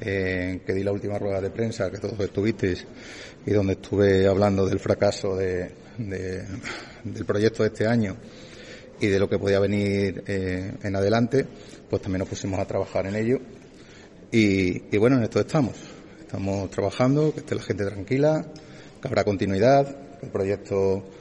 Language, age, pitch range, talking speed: Spanish, 30-49, 100-110 Hz, 175 wpm